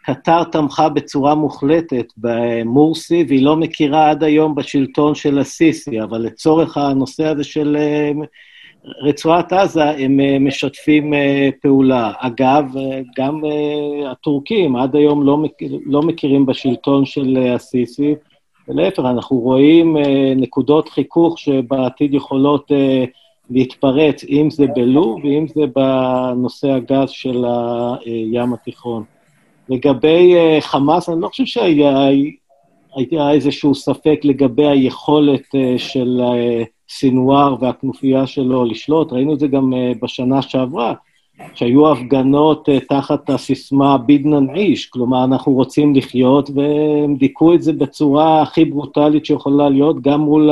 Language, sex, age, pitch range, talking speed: Hebrew, male, 50-69, 130-150 Hz, 115 wpm